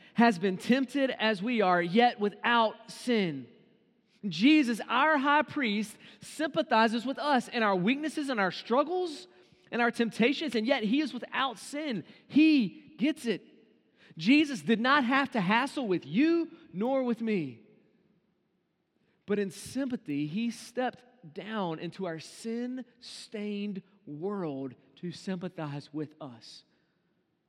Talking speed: 130 wpm